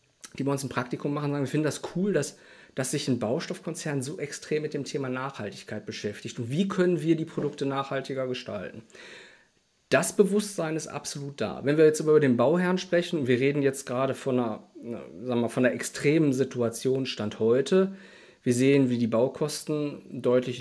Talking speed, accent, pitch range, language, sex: 185 wpm, German, 125-155 Hz, German, male